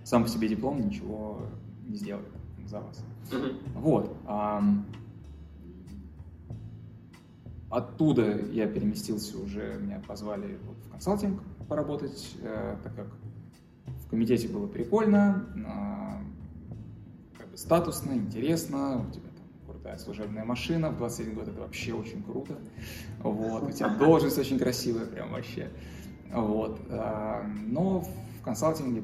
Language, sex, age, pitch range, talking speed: Russian, male, 20-39, 105-145 Hz, 105 wpm